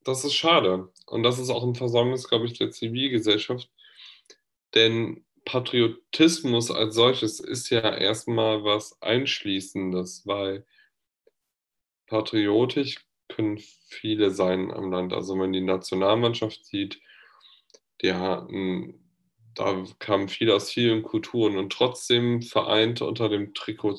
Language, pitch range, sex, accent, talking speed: German, 100-120 Hz, male, German, 115 wpm